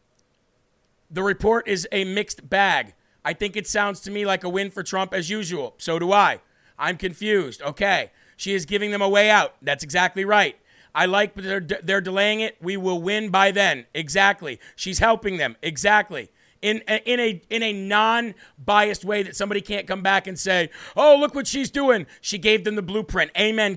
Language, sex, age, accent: English, male, 40-59, American